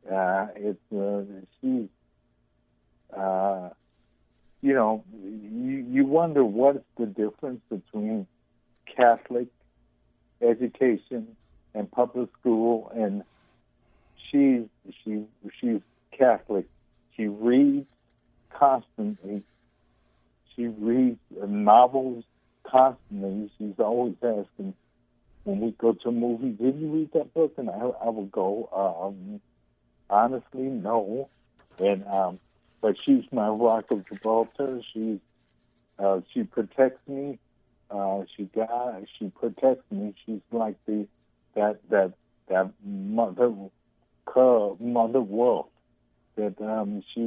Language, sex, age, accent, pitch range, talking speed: English, male, 60-79, American, 100-125 Hz, 105 wpm